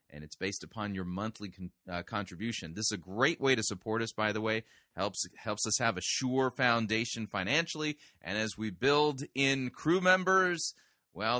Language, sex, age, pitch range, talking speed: English, male, 30-49, 100-135 Hz, 185 wpm